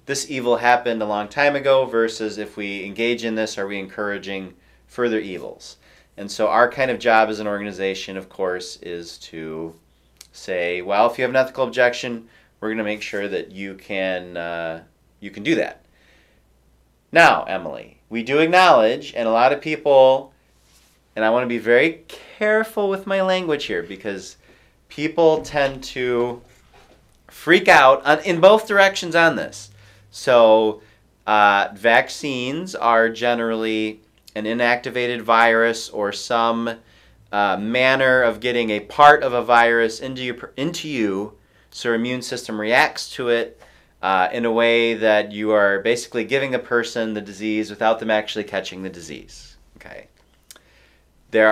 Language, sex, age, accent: English, male, 30-49, American